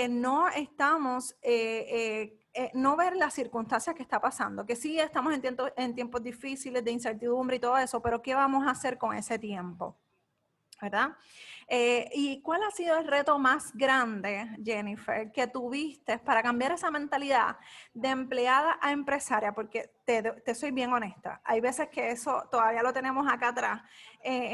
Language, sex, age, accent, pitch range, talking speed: Spanish, female, 20-39, American, 235-280 Hz, 170 wpm